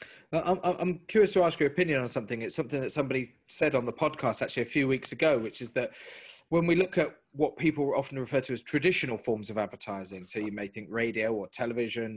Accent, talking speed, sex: British, 225 wpm, male